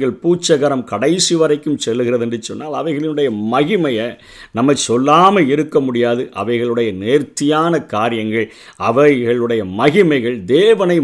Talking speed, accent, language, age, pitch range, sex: 100 wpm, native, Tamil, 50-69, 110-145 Hz, male